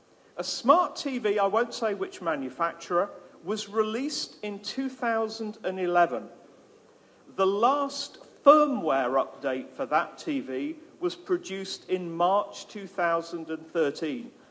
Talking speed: 100 wpm